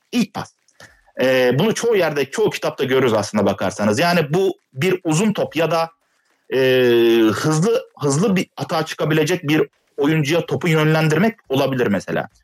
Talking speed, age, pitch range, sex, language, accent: 145 wpm, 40-59, 125-190 Hz, male, Turkish, native